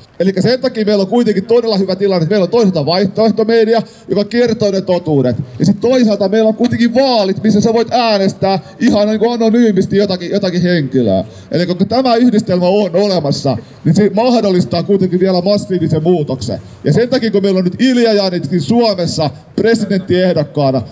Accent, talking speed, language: native, 170 wpm, Finnish